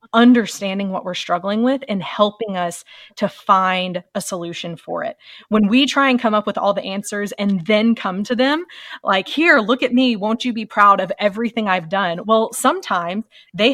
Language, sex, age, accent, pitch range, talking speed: English, female, 20-39, American, 195-235 Hz, 195 wpm